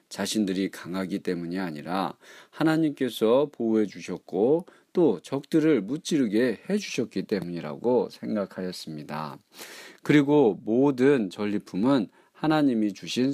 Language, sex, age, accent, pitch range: Korean, male, 40-59, native, 95-145 Hz